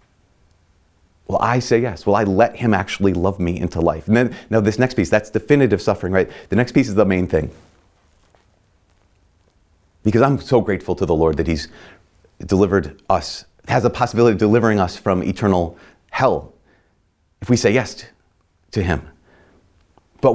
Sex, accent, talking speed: male, American, 170 wpm